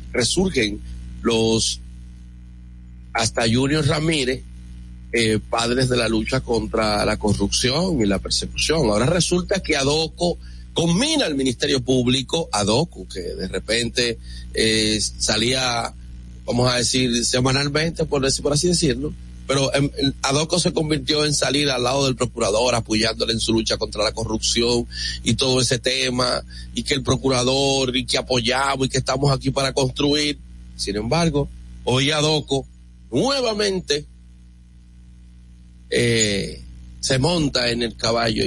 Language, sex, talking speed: Spanish, male, 125 wpm